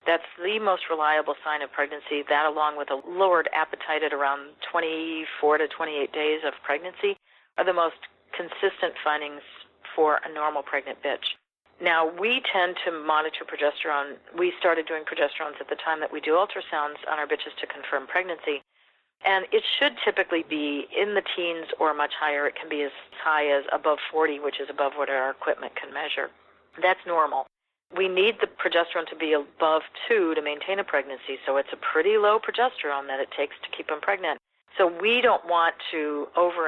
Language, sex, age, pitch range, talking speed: English, female, 50-69, 145-180 Hz, 185 wpm